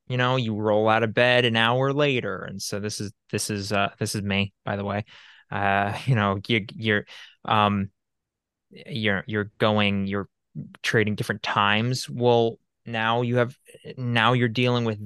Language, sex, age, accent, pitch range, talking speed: English, male, 20-39, American, 105-125 Hz, 170 wpm